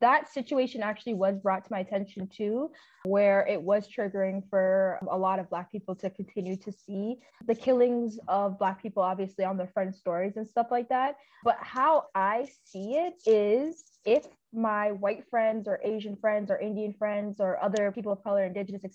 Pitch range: 200-260 Hz